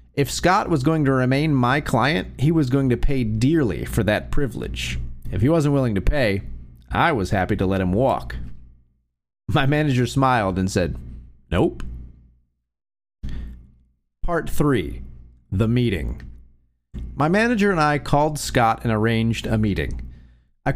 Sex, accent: male, American